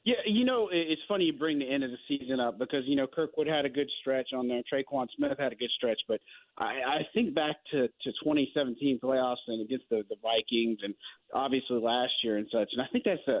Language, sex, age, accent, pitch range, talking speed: English, male, 30-49, American, 120-155 Hz, 235 wpm